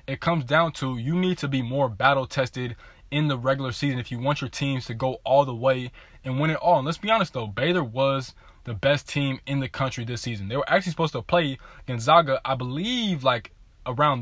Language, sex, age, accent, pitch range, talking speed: English, male, 20-39, American, 125-145 Hz, 230 wpm